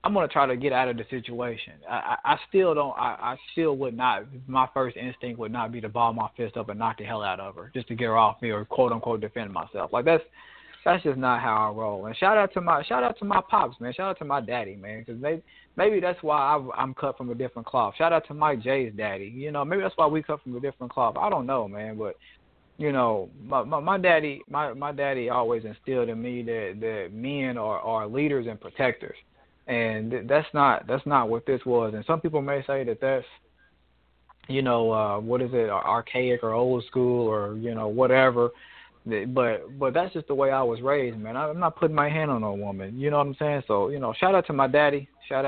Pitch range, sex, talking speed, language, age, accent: 115-140 Hz, male, 250 wpm, English, 20-39, American